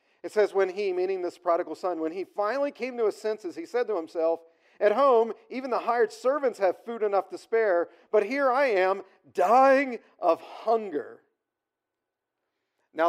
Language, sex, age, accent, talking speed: English, male, 40-59, American, 175 wpm